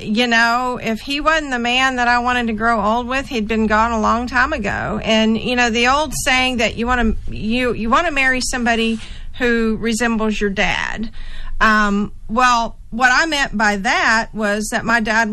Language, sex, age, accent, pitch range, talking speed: English, female, 50-69, American, 210-250 Hz, 195 wpm